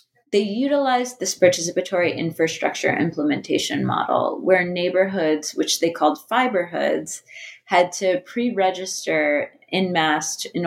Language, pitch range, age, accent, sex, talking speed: English, 155-190 Hz, 20-39, American, female, 105 wpm